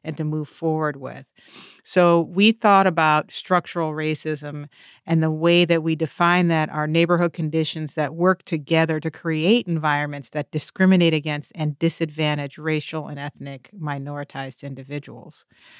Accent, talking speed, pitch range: American, 140 wpm, 150-175 Hz